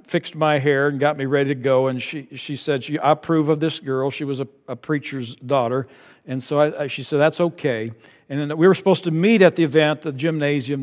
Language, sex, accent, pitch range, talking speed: English, male, American, 130-155 Hz, 250 wpm